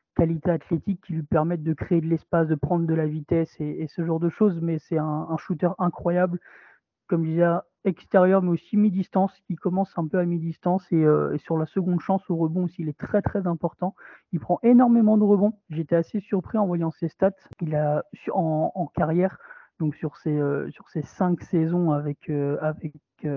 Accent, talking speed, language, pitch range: French, 210 wpm, French, 160-190 Hz